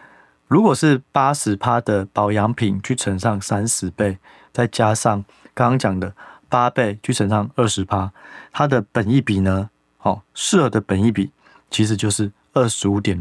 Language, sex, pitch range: Chinese, male, 100-130 Hz